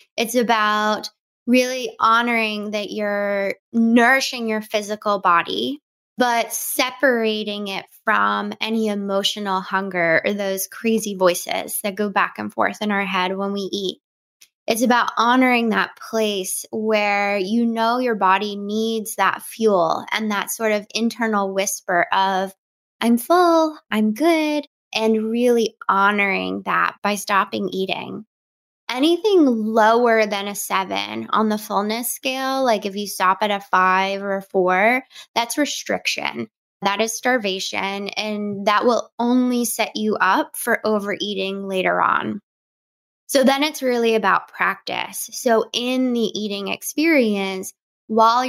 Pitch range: 195-235 Hz